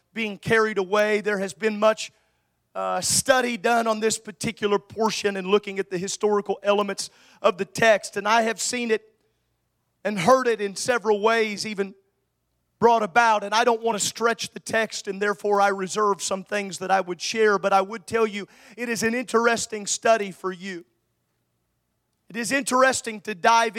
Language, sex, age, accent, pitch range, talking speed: English, male, 40-59, American, 200-255 Hz, 180 wpm